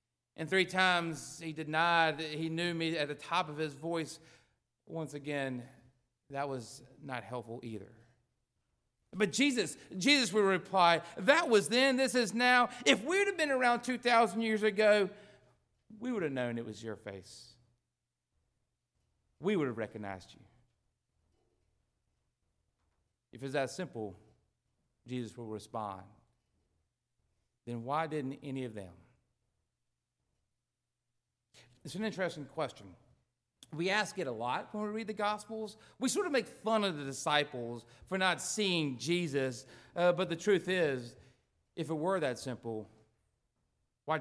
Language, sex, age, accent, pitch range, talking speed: English, male, 40-59, American, 115-180 Hz, 145 wpm